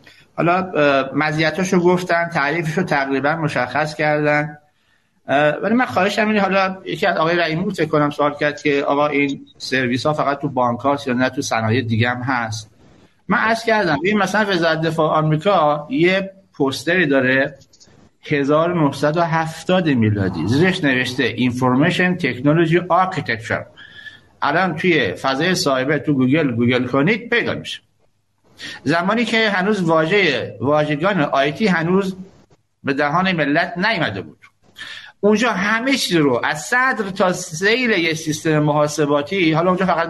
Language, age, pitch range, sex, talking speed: Persian, 50-69, 140-185 Hz, male, 140 wpm